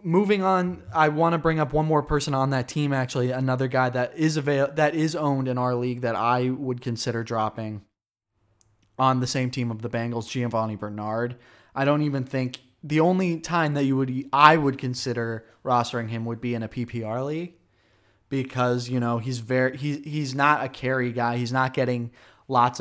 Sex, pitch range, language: male, 115-135 Hz, English